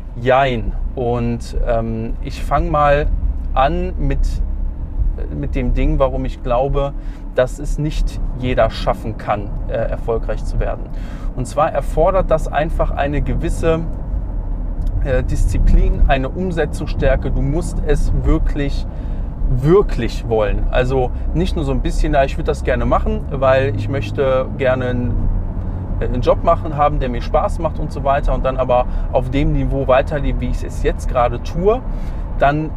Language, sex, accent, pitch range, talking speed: German, male, German, 90-130 Hz, 150 wpm